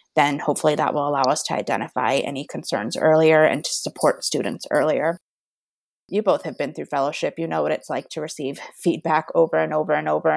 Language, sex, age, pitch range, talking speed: English, female, 20-39, 140-165 Hz, 205 wpm